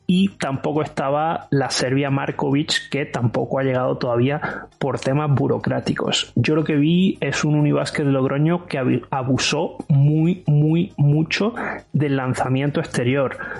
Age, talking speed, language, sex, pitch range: 30-49, 130 wpm, Spanish, male, 130-150 Hz